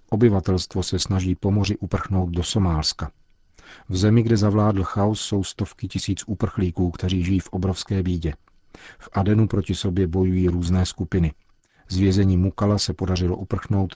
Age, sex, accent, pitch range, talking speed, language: 40-59, male, native, 90-100 Hz, 145 wpm, Czech